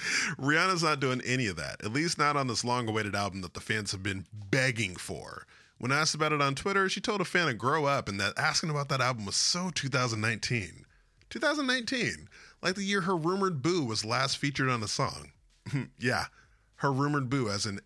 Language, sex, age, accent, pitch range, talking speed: English, male, 20-39, American, 115-170 Hz, 205 wpm